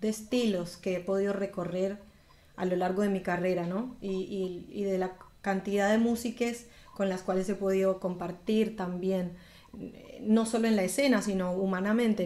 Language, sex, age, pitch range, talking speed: Spanish, female, 20-39, 185-215 Hz, 170 wpm